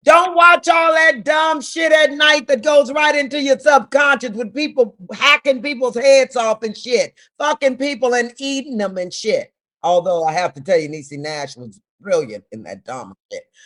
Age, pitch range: 40-59, 240-325 Hz